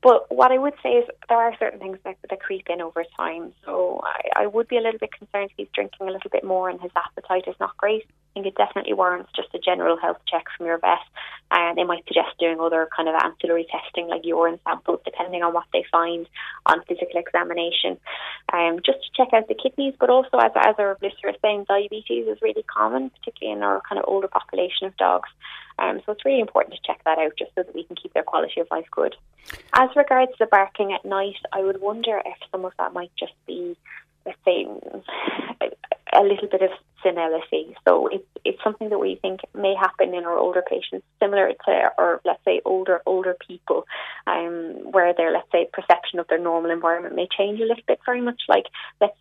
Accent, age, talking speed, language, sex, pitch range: British, 20-39, 225 wpm, English, female, 170-215 Hz